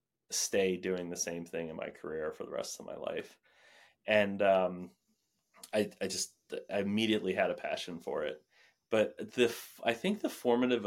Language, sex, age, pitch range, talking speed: English, male, 30-49, 90-115 Hz, 175 wpm